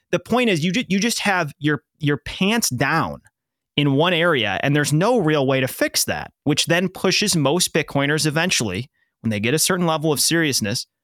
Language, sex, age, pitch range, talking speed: English, male, 30-49, 125-175 Hz, 190 wpm